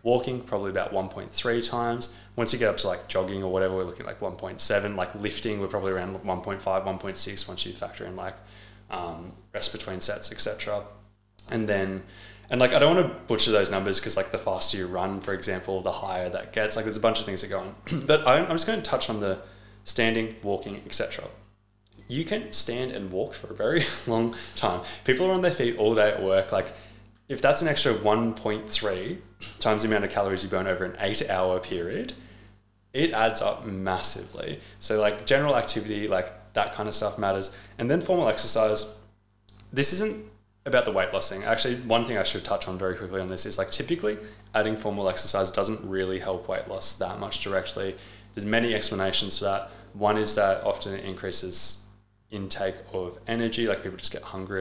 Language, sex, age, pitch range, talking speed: English, male, 20-39, 95-115 Hz, 205 wpm